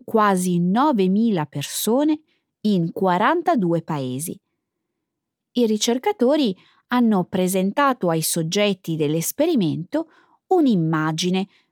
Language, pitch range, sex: Italian, 175-270 Hz, female